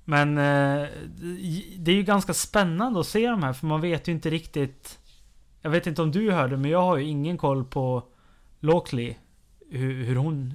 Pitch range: 125-165 Hz